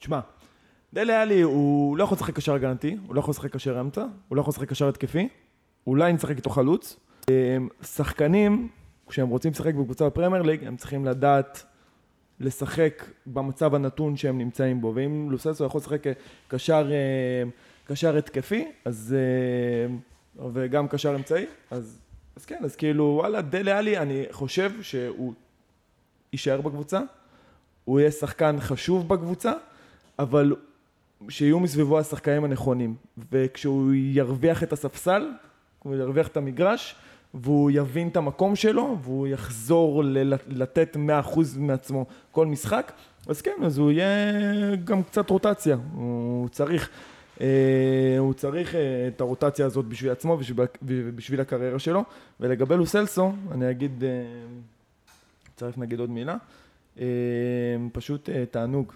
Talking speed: 100 wpm